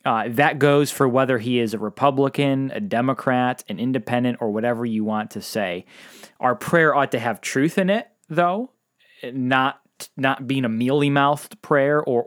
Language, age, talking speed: English, 20-39, 170 wpm